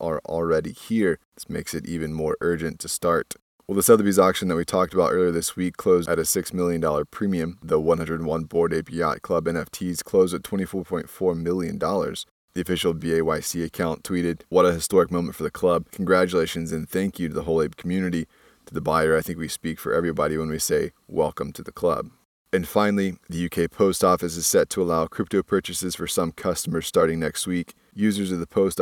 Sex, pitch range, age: male, 80-90 Hz, 20-39